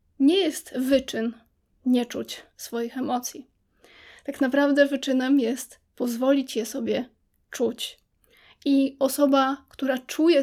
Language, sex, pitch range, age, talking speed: Polish, female, 245-275 Hz, 20-39, 110 wpm